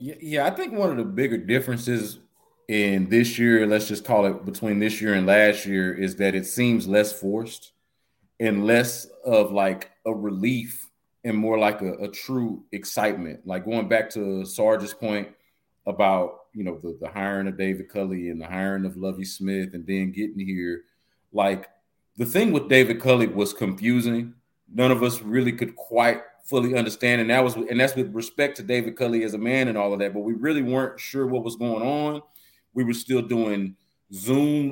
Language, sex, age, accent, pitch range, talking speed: English, male, 30-49, American, 100-125 Hz, 190 wpm